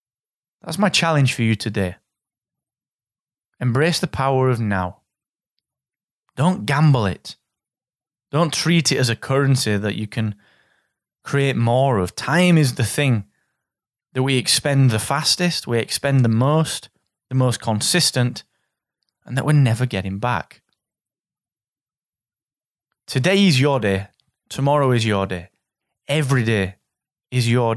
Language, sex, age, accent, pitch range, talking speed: English, male, 20-39, British, 115-165 Hz, 130 wpm